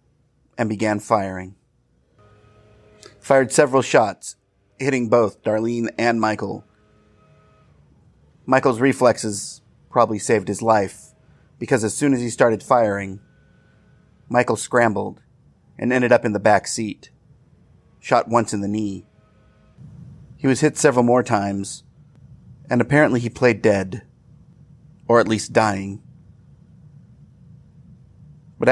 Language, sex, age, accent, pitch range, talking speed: English, male, 30-49, American, 105-135 Hz, 115 wpm